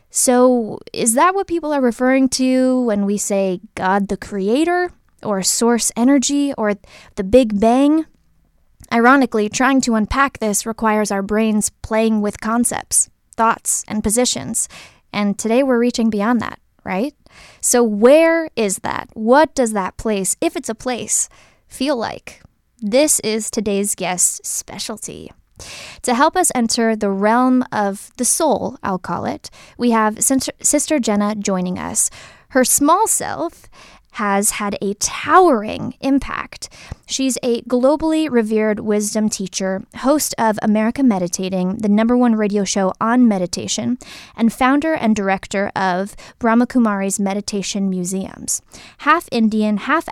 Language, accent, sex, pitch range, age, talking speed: English, American, female, 205-260 Hz, 20-39, 140 wpm